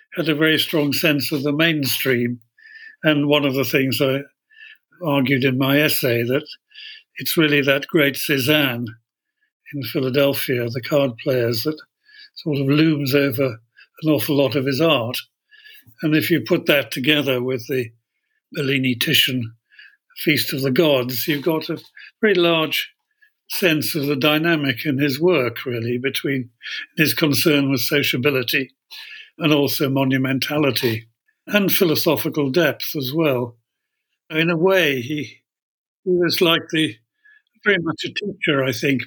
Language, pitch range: English, 135-170 Hz